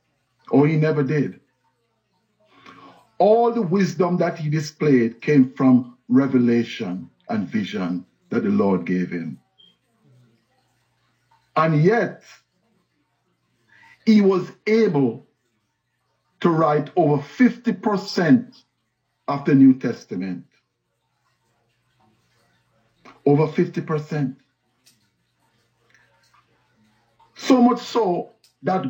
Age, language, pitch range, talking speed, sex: 60-79, English, 125-185 Hz, 80 wpm, male